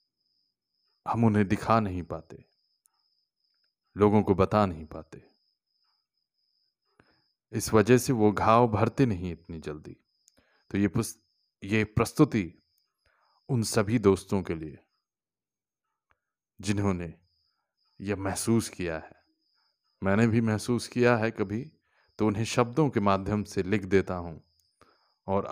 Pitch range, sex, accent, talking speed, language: 95-120 Hz, male, native, 120 wpm, Hindi